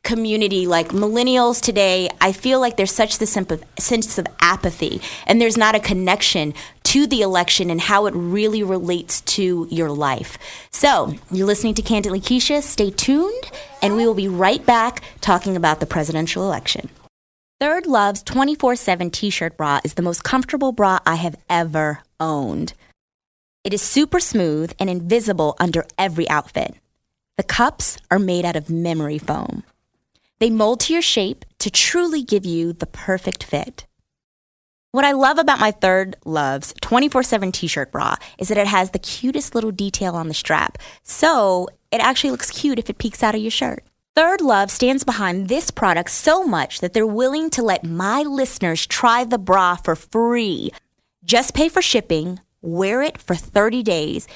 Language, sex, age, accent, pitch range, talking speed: English, female, 20-39, American, 175-250 Hz, 170 wpm